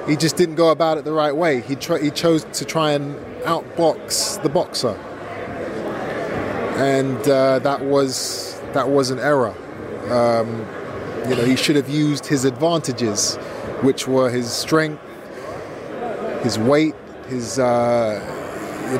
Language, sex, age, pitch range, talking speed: English, male, 20-39, 120-140 Hz, 140 wpm